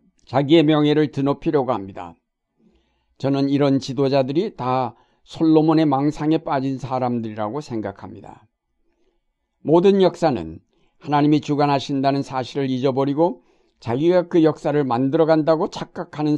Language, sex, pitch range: Korean, male, 125-155 Hz